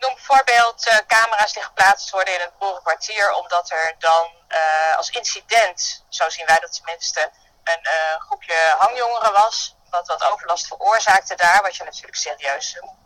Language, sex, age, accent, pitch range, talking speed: Dutch, female, 20-39, Dutch, 170-230 Hz, 170 wpm